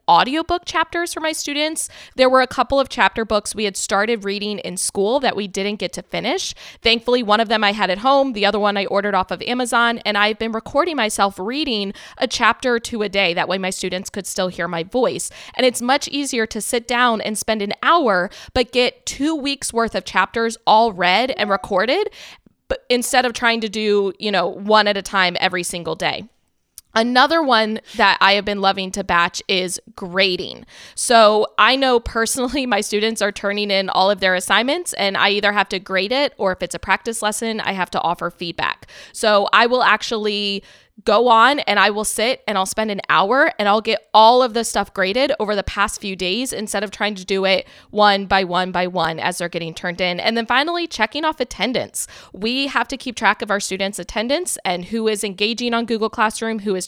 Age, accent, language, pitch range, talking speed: 20-39, American, English, 195-235 Hz, 220 wpm